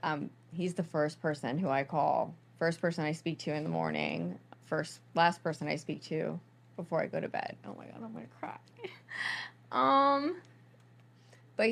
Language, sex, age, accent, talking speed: English, female, 20-39, American, 185 wpm